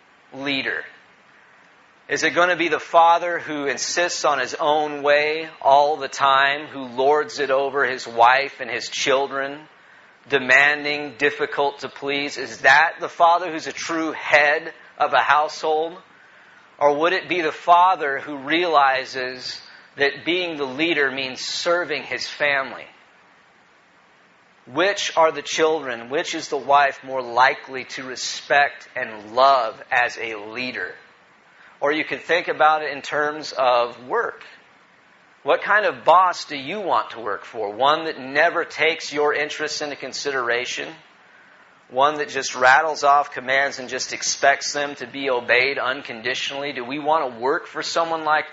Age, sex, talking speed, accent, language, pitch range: 40-59, male, 155 wpm, American, English, 135-155 Hz